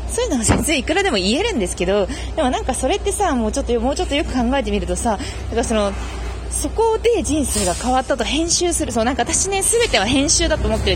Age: 20-39